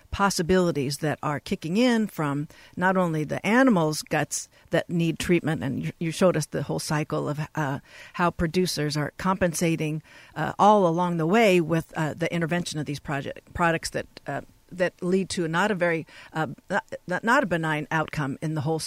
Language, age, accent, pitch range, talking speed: English, 50-69, American, 160-205 Hz, 180 wpm